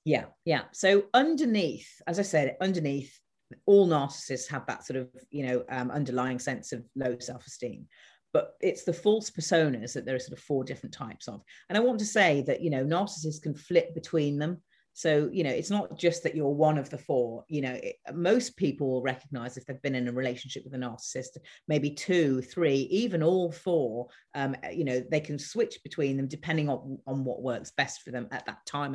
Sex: female